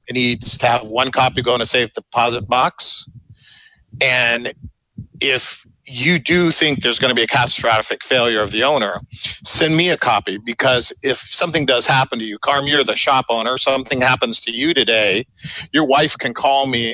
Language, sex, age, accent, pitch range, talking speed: English, male, 50-69, American, 120-145 Hz, 190 wpm